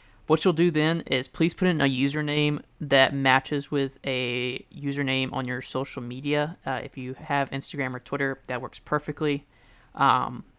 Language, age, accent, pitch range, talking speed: English, 20-39, American, 135-150 Hz, 170 wpm